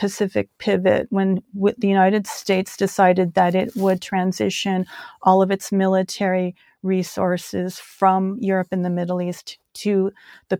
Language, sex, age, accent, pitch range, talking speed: English, female, 40-59, American, 195-230 Hz, 140 wpm